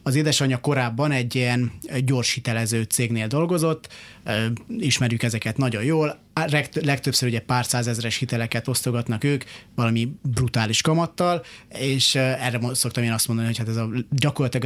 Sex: male